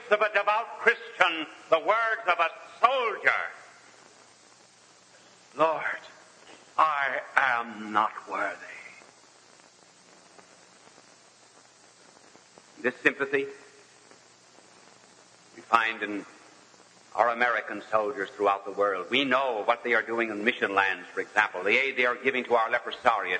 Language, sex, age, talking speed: English, male, 60-79, 115 wpm